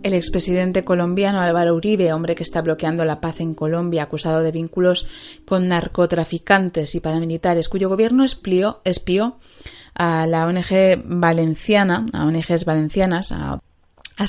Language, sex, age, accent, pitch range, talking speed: Spanish, female, 20-39, Spanish, 160-185 Hz, 130 wpm